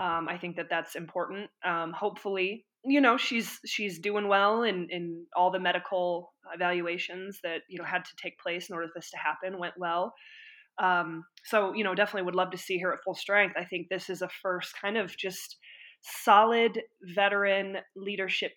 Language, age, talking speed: English, 20-39, 195 wpm